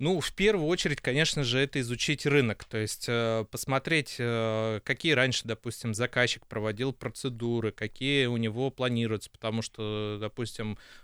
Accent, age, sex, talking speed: native, 20-39, male, 135 wpm